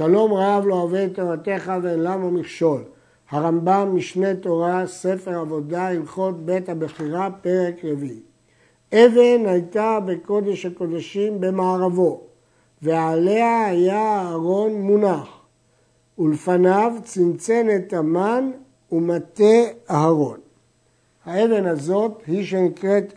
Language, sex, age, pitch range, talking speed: Hebrew, male, 60-79, 160-200 Hz, 95 wpm